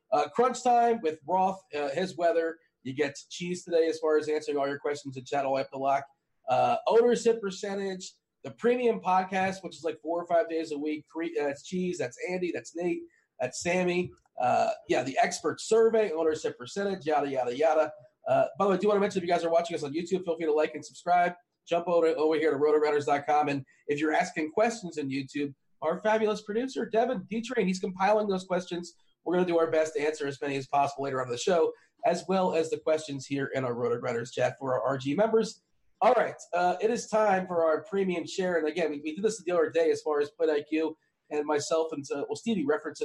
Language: English